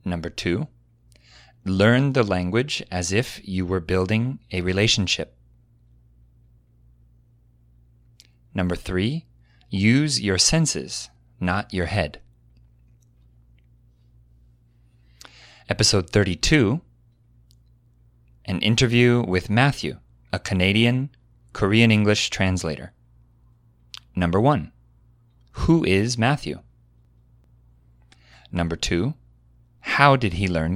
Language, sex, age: Korean, male, 30-49